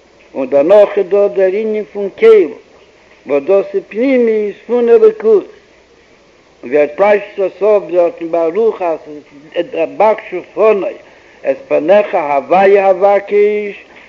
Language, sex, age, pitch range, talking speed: Hebrew, male, 60-79, 180-255 Hz, 80 wpm